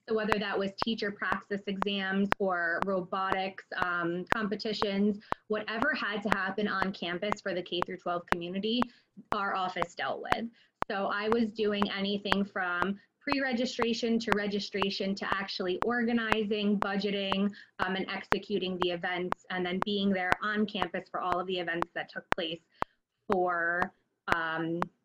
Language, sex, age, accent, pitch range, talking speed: English, female, 20-39, American, 185-225 Hz, 145 wpm